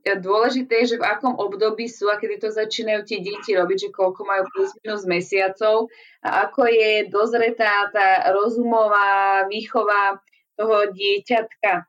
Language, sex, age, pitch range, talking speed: Slovak, female, 20-39, 190-230 Hz, 140 wpm